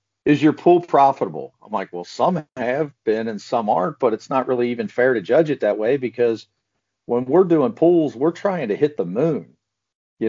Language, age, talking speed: English, 50-69, 210 wpm